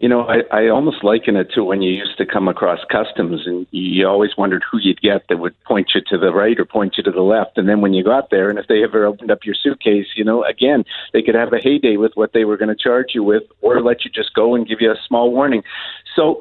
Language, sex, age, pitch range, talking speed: English, male, 50-69, 105-130 Hz, 285 wpm